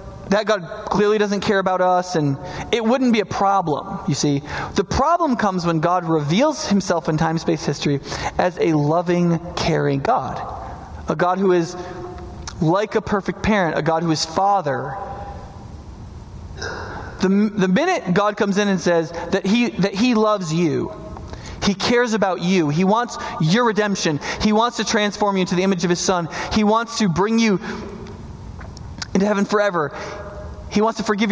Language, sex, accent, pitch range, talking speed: English, male, American, 150-210 Hz, 170 wpm